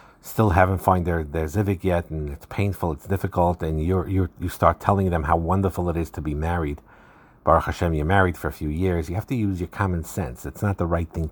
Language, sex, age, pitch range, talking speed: English, male, 50-69, 80-95 Hz, 235 wpm